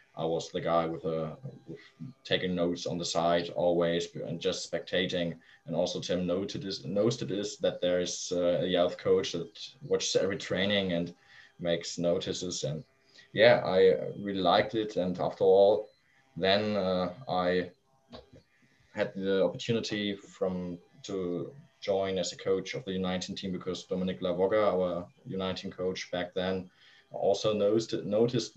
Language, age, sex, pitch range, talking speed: English, 20-39, male, 90-100 Hz, 155 wpm